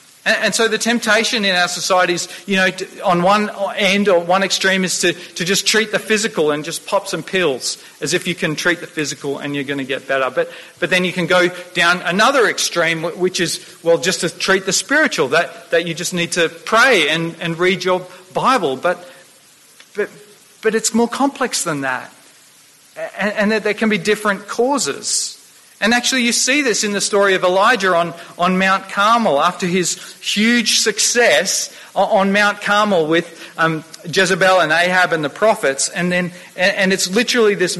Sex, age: male, 40-59